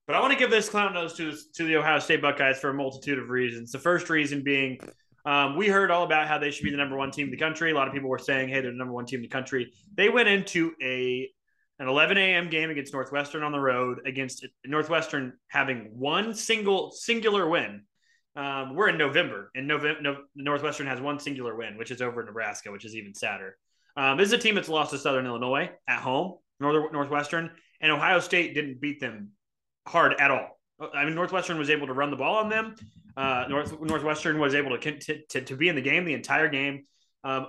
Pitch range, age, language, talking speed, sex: 135-165 Hz, 20-39, English, 230 wpm, male